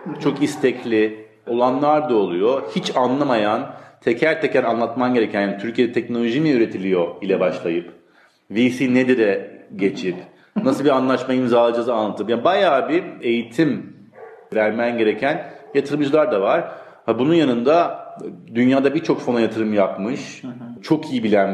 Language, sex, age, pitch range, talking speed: Turkish, male, 40-59, 105-130 Hz, 125 wpm